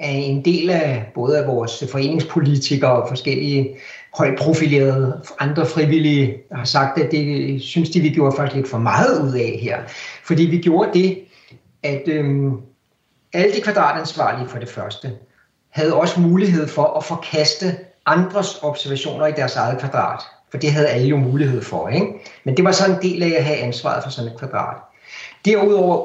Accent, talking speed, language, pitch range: native, 170 wpm, Danish, 135-175 Hz